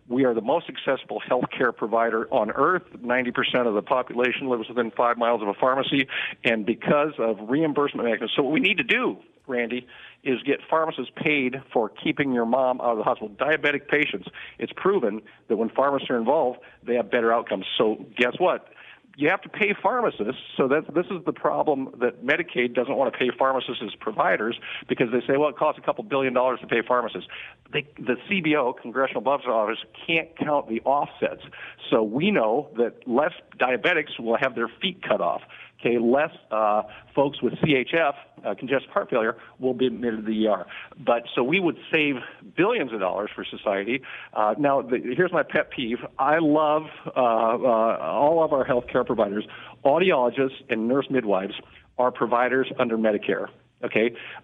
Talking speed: 180 wpm